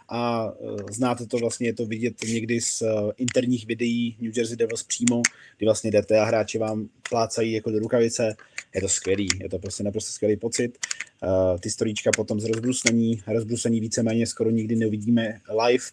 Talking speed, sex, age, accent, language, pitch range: 170 wpm, male, 30-49, native, Czech, 105-120 Hz